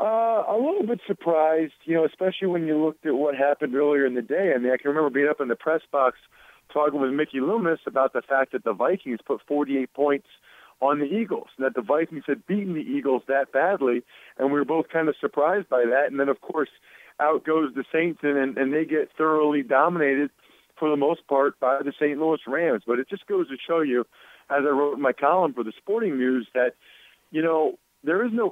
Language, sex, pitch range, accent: English, male, 130-155 Hz, American